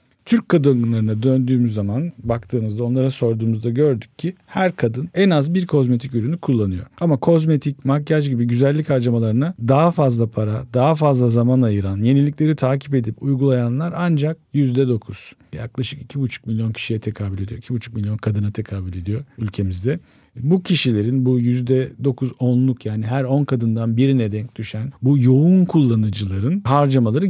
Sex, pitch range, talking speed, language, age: male, 110-140 Hz, 140 wpm, Turkish, 50-69